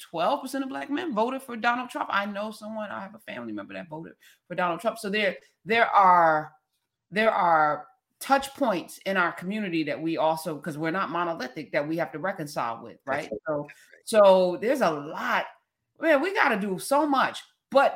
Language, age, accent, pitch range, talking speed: English, 30-49, American, 170-255 Hz, 195 wpm